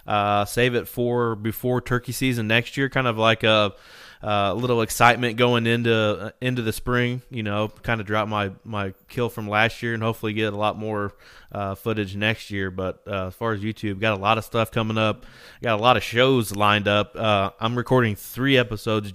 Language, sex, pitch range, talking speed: English, male, 105-120 Hz, 210 wpm